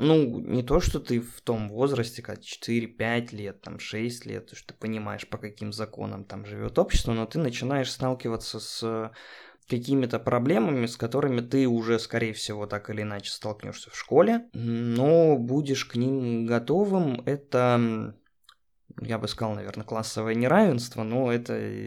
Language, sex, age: Russian, male, 20-39